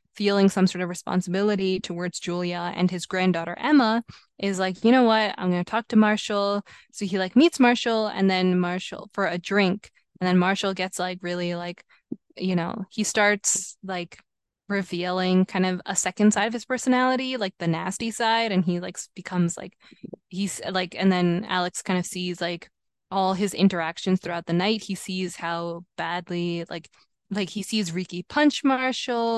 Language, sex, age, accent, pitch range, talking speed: English, female, 20-39, American, 180-215 Hz, 180 wpm